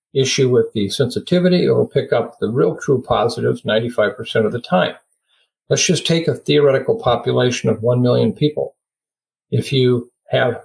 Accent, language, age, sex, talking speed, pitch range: American, English, 50-69, male, 165 wpm, 120-195 Hz